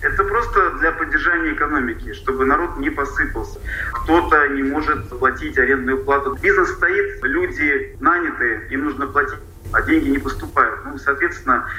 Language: Russian